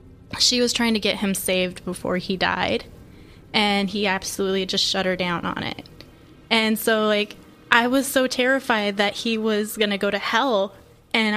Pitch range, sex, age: 195-225 Hz, female, 20-39